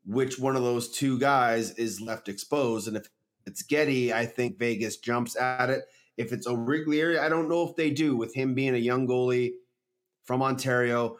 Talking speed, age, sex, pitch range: 195 wpm, 30-49, male, 115-135 Hz